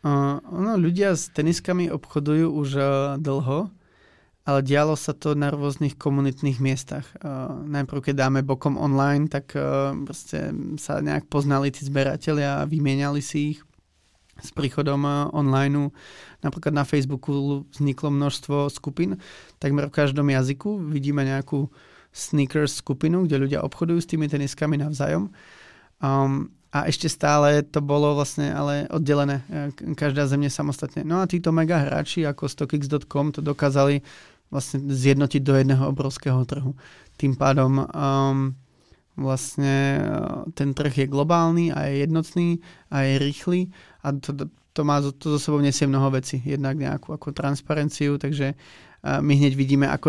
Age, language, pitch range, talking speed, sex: 20-39, Czech, 140-150 Hz, 140 wpm, male